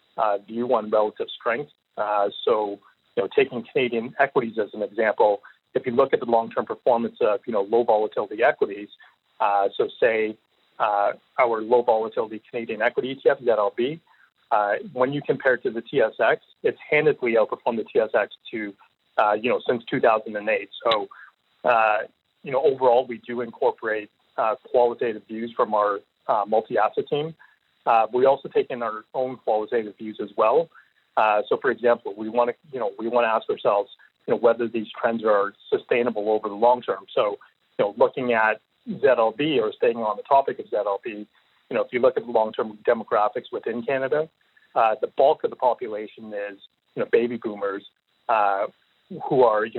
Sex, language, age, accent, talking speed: male, English, 30-49, American, 180 wpm